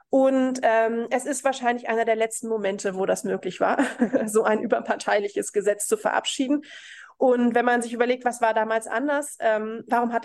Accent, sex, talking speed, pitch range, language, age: German, female, 180 wpm, 210-245 Hz, German, 30-49